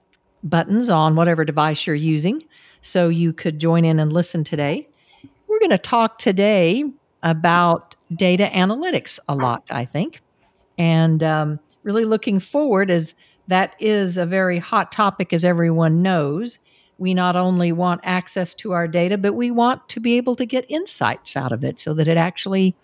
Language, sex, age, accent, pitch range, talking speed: English, female, 50-69, American, 165-225 Hz, 170 wpm